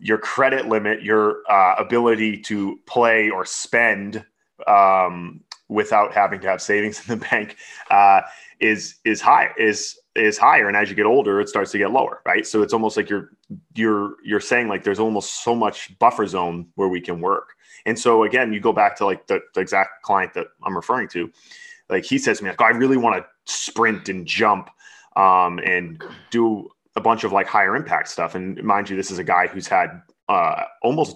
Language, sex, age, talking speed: English, male, 20-39, 205 wpm